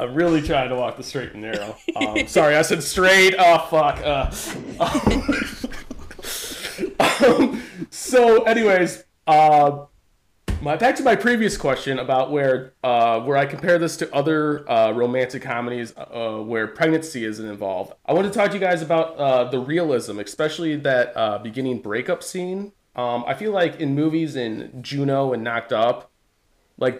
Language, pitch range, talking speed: English, 125-165 Hz, 165 wpm